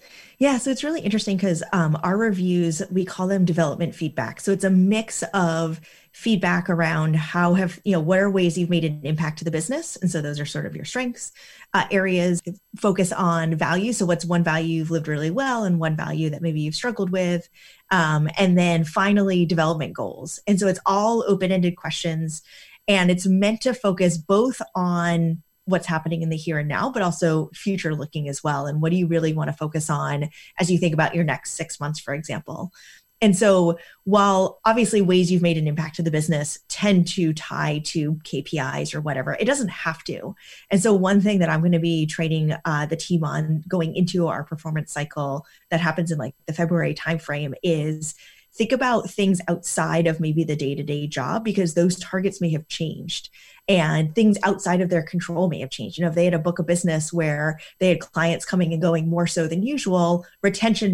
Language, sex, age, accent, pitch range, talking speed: English, female, 30-49, American, 160-190 Hz, 210 wpm